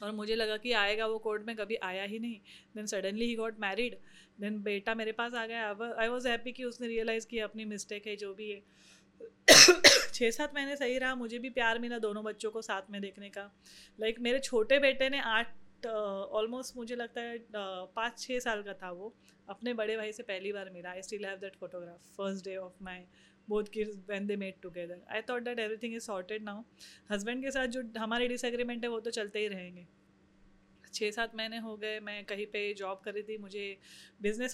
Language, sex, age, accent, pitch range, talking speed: Hindi, female, 30-49, native, 200-230 Hz, 215 wpm